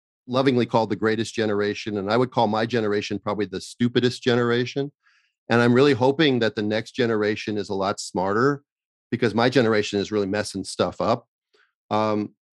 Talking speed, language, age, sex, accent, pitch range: 170 wpm, English, 40-59, male, American, 105-135 Hz